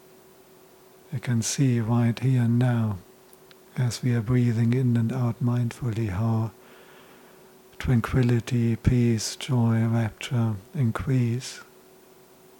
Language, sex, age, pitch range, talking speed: English, male, 50-69, 115-130 Hz, 100 wpm